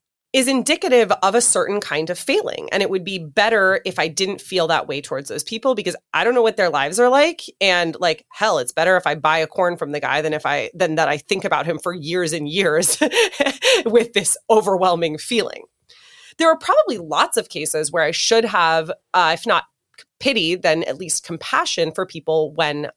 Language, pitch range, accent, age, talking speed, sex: English, 160-240 Hz, American, 30-49, 215 wpm, female